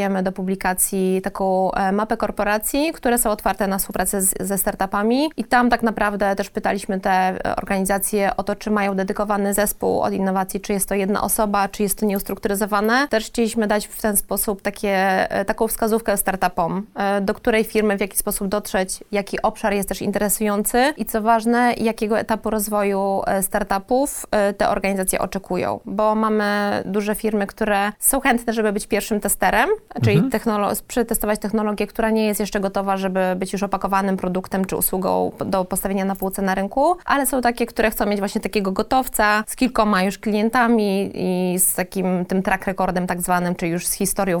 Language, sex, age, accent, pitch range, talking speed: Polish, female, 20-39, native, 190-220 Hz, 170 wpm